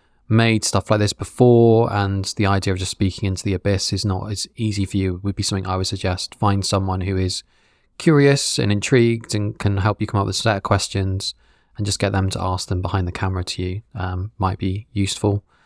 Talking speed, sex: 235 wpm, male